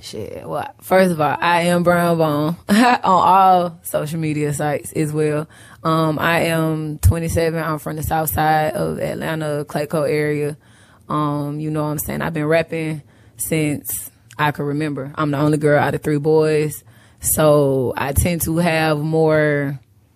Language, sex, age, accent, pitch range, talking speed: English, female, 20-39, American, 150-170 Hz, 165 wpm